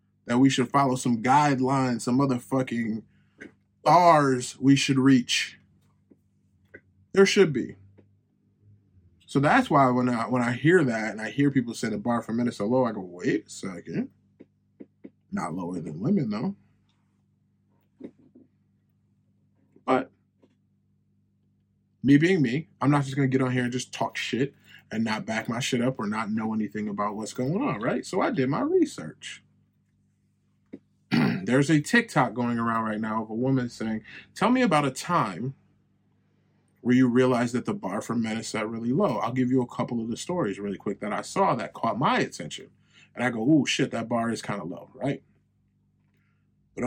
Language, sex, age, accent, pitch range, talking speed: English, male, 20-39, American, 105-130 Hz, 180 wpm